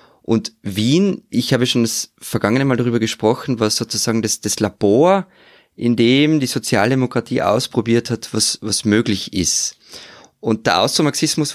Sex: male